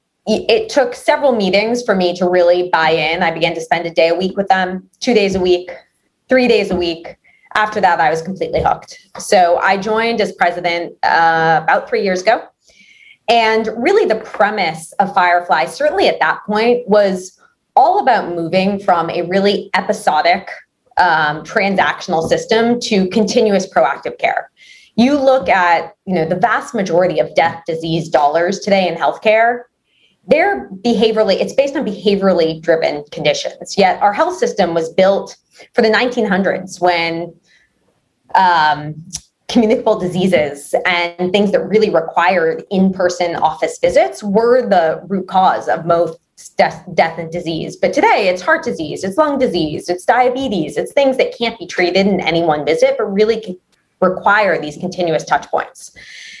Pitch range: 170-230 Hz